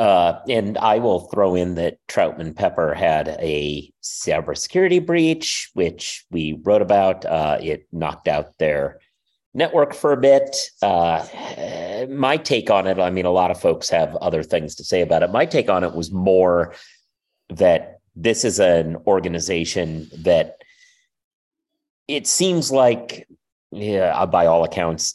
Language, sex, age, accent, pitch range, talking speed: English, male, 40-59, American, 85-140 Hz, 150 wpm